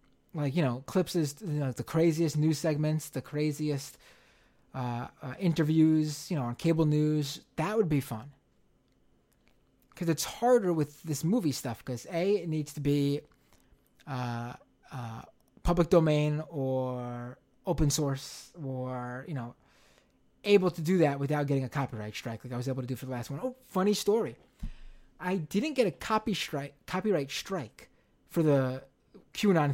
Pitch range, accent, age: 130-180 Hz, American, 20-39